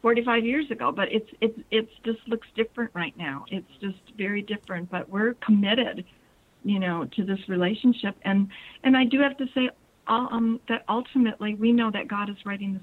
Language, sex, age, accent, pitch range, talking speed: English, female, 50-69, American, 195-225 Hz, 190 wpm